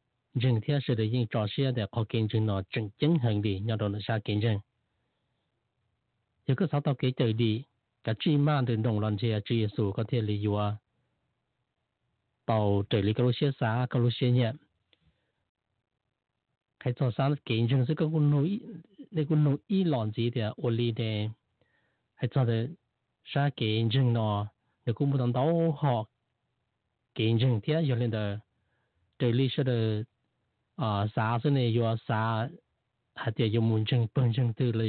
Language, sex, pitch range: English, male, 110-130 Hz